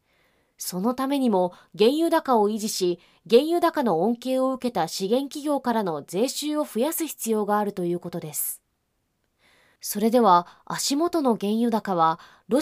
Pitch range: 195-300 Hz